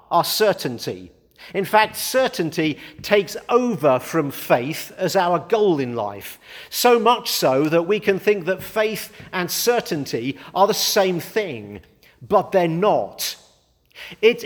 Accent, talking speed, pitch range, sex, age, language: British, 135 wpm, 155-210 Hz, male, 50-69, English